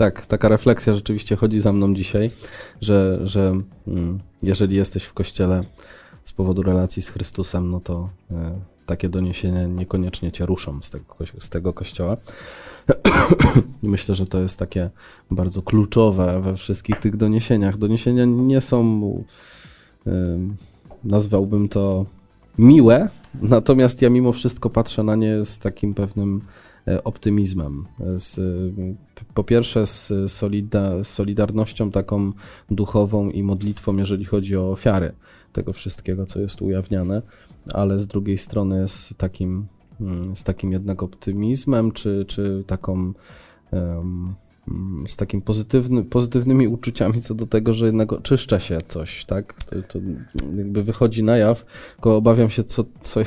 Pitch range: 95-110 Hz